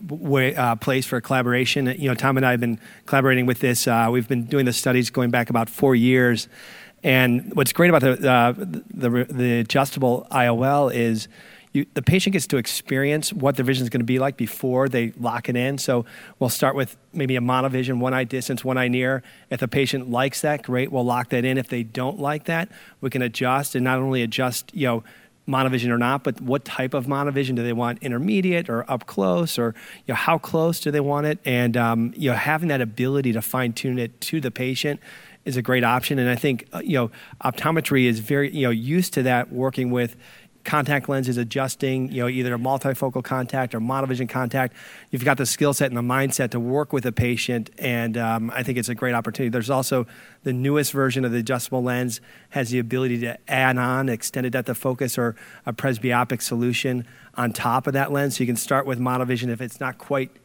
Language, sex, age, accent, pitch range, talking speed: English, male, 40-59, American, 120-135 Hz, 220 wpm